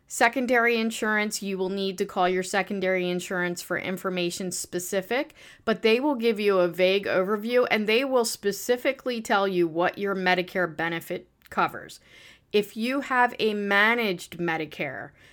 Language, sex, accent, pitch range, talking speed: English, female, American, 180-220 Hz, 150 wpm